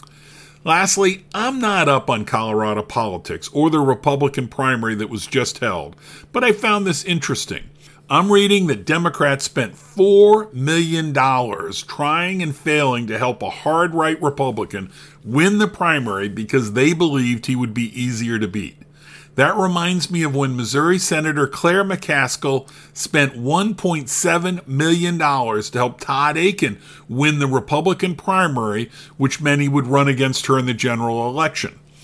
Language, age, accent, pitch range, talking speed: English, 50-69, American, 130-170 Hz, 145 wpm